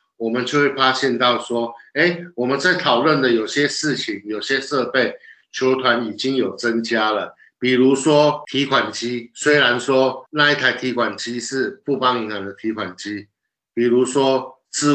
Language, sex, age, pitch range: Chinese, male, 50-69, 120-150 Hz